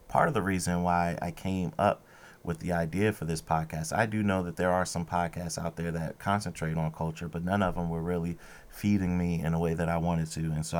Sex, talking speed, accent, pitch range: male, 250 wpm, American, 85-95 Hz